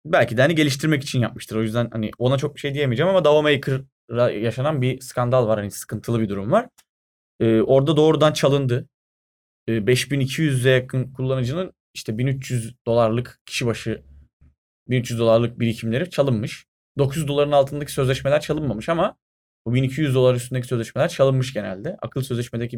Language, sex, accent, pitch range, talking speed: Turkish, male, native, 110-145 Hz, 150 wpm